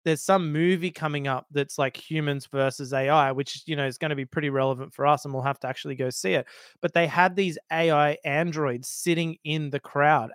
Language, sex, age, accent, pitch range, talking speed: English, male, 20-39, Australian, 140-185 Hz, 225 wpm